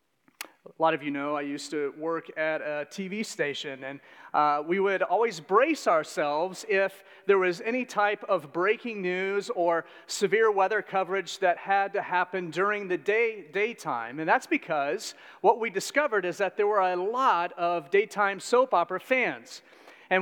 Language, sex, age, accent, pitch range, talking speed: English, male, 40-59, American, 165-240 Hz, 170 wpm